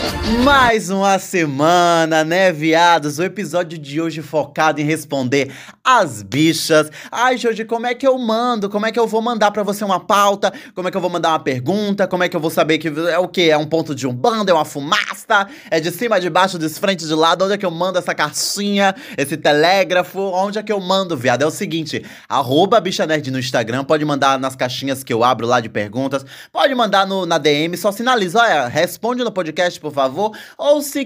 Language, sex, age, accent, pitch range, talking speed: Portuguese, male, 20-39, Brazilian, 150-200 Hz, 220 wpm